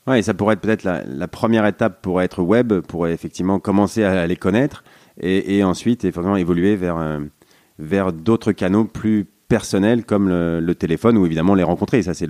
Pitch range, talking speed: 90-115 Hz, 195 wpm